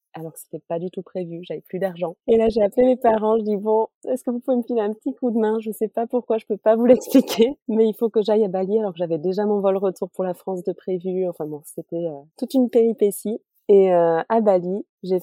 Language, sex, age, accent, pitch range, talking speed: French, female, 30-49, French, 165-200 Hz, 280 wpm